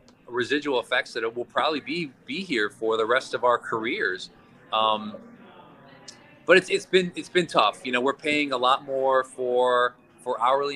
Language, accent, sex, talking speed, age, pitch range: English, American, male, 185 wpm, 30-49, 115-145 Hz